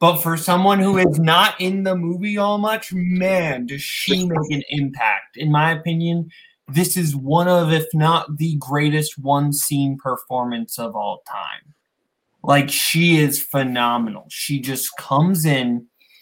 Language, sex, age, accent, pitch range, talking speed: English, male, 20-39, American, 150-200 Hz, 155 wpm